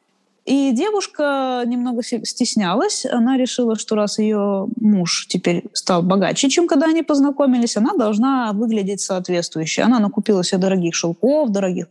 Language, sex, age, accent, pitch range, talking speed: Russian, female, 20-39, native, 195-270 Hz, 135 wpm